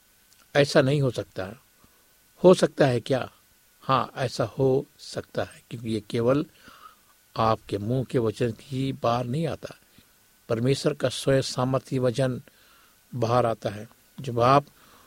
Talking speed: 135 wpm